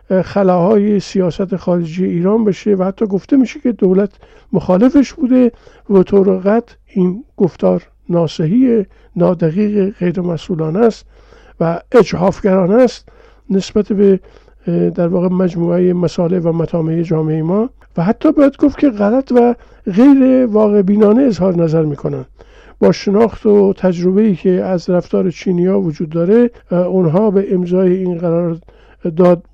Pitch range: 180-225 Hz